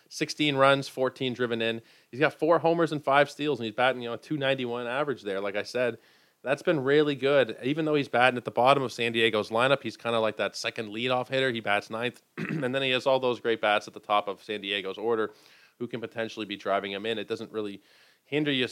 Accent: American